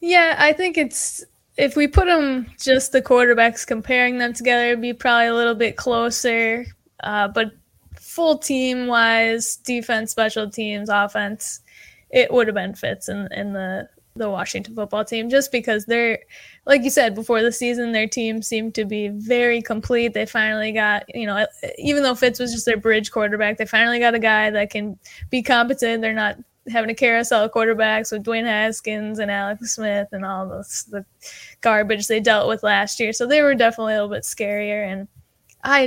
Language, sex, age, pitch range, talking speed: English, female, 10-29, 210-245 Hz, 190 wpm